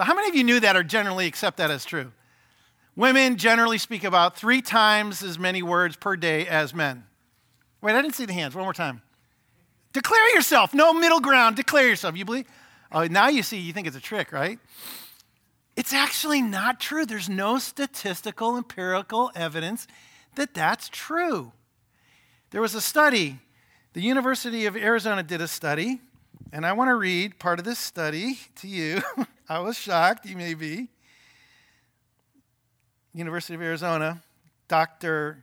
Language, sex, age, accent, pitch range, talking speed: English, male, 50-69, American, 160-225 Hz, 165 wpm